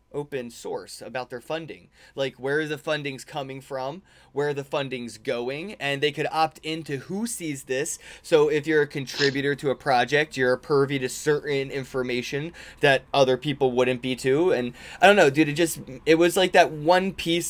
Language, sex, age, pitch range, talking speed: English, male, 20-39, 125-145 Hz, 195 wpm